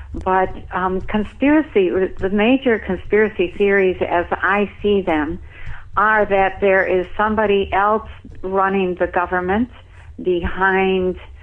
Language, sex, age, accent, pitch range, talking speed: English, female, 60-79, American, 170-195 Hz, 110 wpm